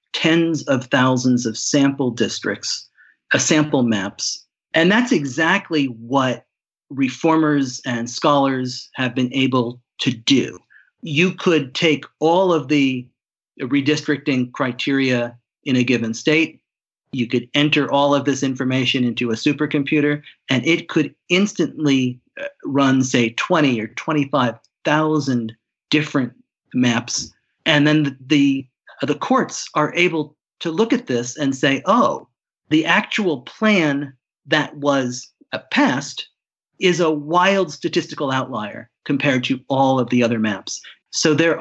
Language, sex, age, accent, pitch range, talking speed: English, male, 40-59, American, 125-160 Hz, 130 wpm